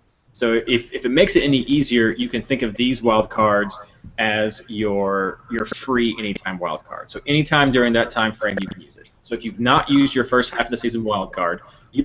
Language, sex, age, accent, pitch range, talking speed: English, male, 30-49, American, 110-135 Hz, 230 wpm